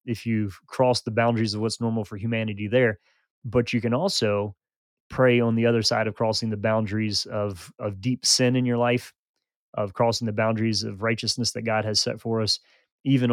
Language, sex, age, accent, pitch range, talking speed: English, male, 30-49, American, 105-120 Hz, 200 wpm